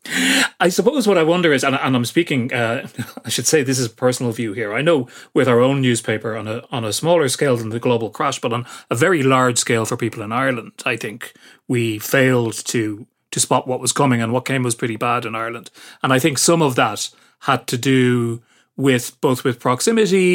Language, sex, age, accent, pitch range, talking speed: English, male, 30-49, Irish, 115-145 Hz, 225 wpm